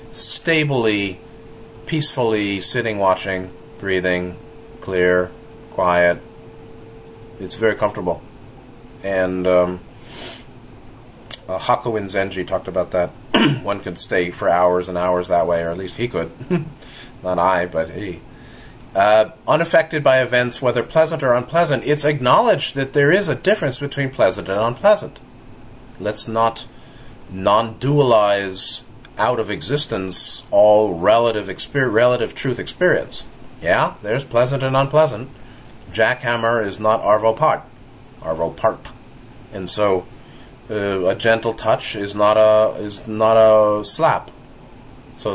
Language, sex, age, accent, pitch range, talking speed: English, male, 30-49, American, 100-130 Hz, 125 wpm